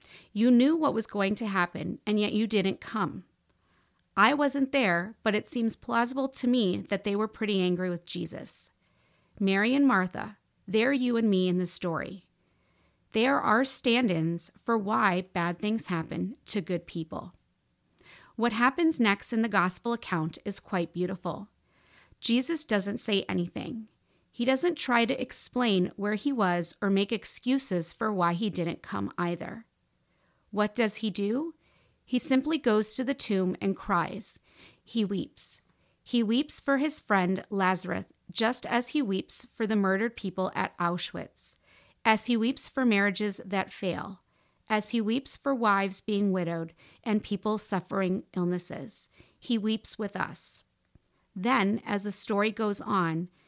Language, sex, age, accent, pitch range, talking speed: English, female, 30-49, American, 185-235 Hz, 155 wpm